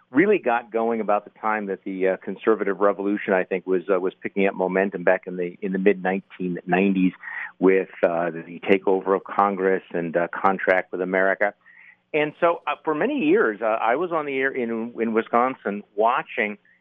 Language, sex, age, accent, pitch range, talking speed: English, male, 50-69, American, 95-120 Hz, 190 wpm